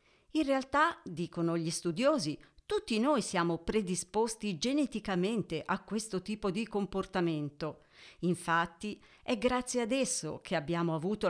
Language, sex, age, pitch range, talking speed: Italian, female, 50-69, 170-225 Hz, 120 wpm